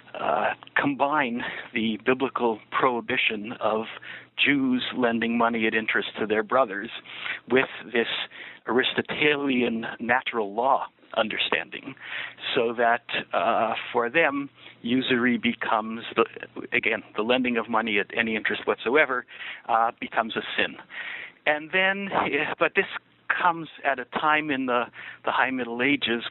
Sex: male